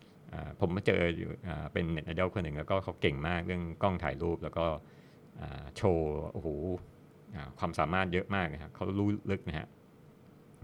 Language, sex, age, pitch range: Thai, male, 60-79, 80-95 Hz